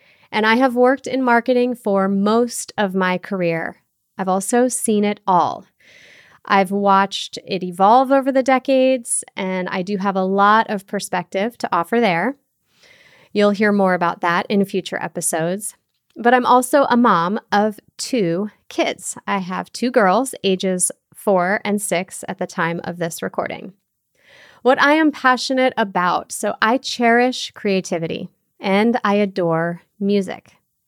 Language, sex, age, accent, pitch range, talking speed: English, female, 30-49, American, 185-240 Hz, 150 wpm